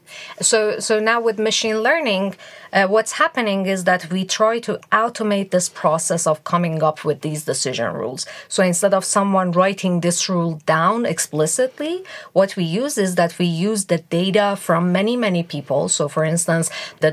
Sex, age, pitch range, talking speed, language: female, 30-49, 170-220 Hz, 175 wpm, English